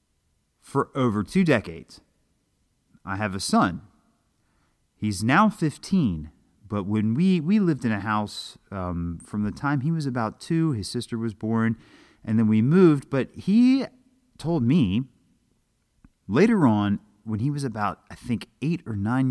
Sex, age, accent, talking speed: male, 30-49, American, 155 wpm